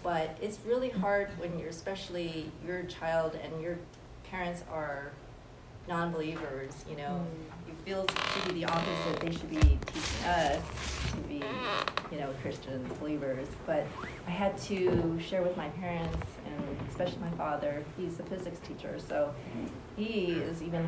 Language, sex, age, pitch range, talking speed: English, female, 30-49, 160-185 Hz, 150 wpm